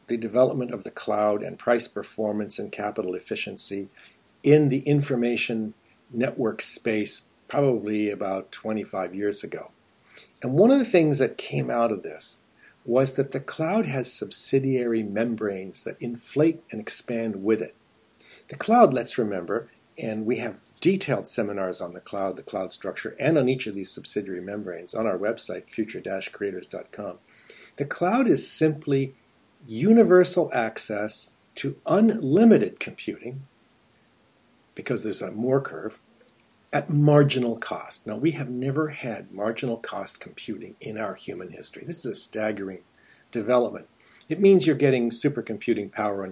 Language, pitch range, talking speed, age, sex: English, 110-145 Hz, 145 wpm, 50-69, male